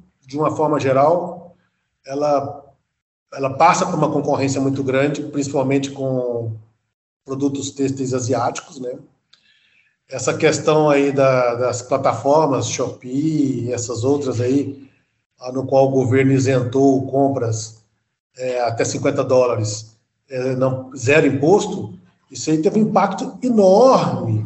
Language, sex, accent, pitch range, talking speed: Portuguese, male, Brazilian, 135-175 Hz, 120 wpm